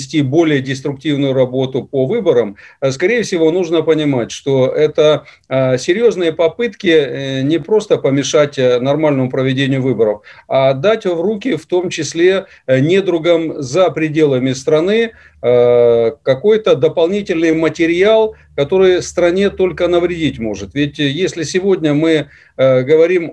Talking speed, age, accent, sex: 110 wpm, 40-59, native, male